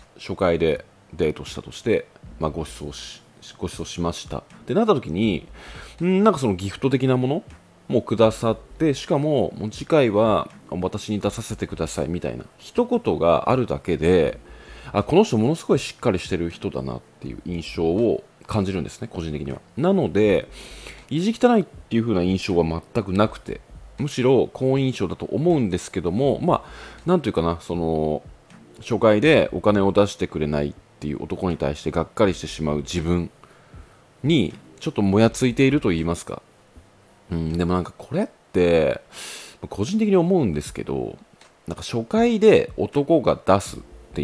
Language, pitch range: Japanese, 85-135 Hz